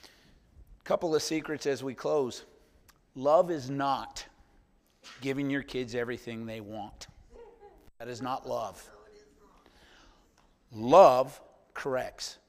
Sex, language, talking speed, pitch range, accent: male, English, 100 wpm, 125-170 Hz, American